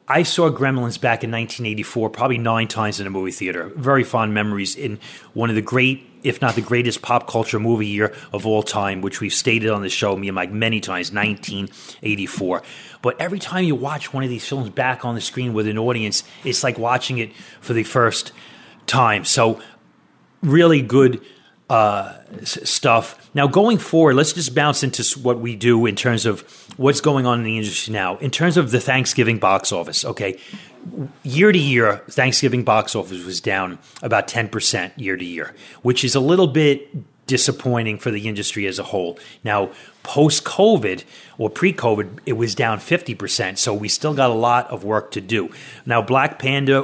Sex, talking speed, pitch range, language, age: male, 190 wpm, 110-135 Hz, English, 30-49